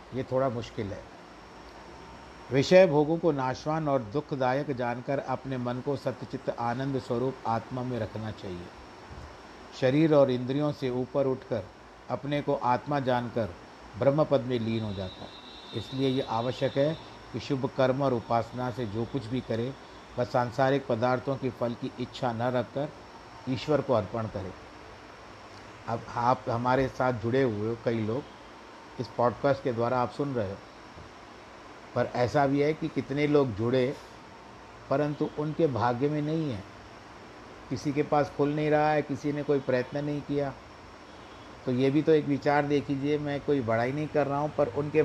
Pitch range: 115-145 Hz